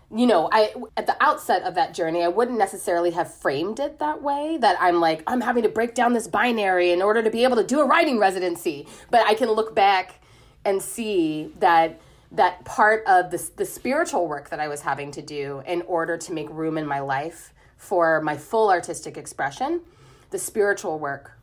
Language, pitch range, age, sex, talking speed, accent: English, 150-215 Hz, 30-49, female, 205 wpm, American